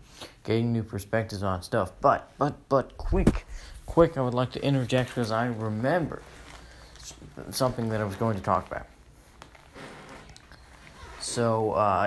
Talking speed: 140 wpm